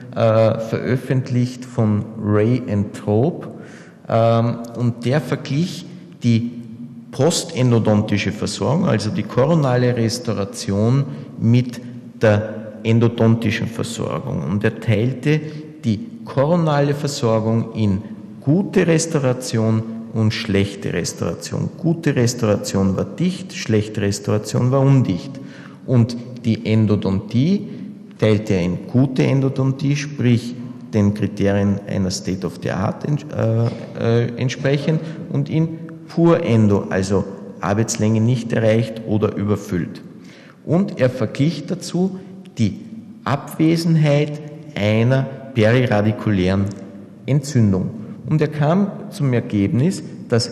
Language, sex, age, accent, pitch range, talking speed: German, male, 50-69, Austrian, 110-150 Hz, 95 wpm